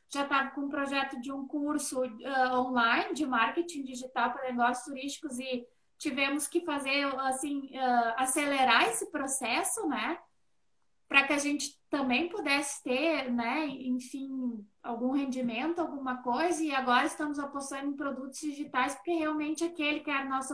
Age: 20-39